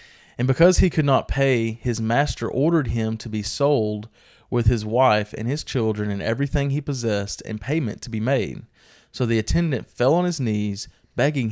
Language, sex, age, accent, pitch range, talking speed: English, male, 30-49, American, 105-135 Hz, 190 wpm